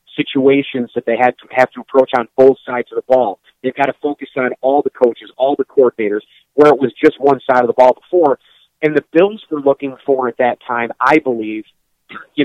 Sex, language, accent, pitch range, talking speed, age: male, English, American, 125-150 Hz, 225 wpm, 40-59